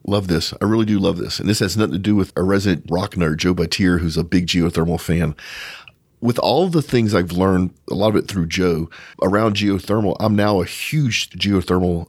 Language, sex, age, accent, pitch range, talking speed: English, male, 40-59, American, 85-105 Hz, 215 wpm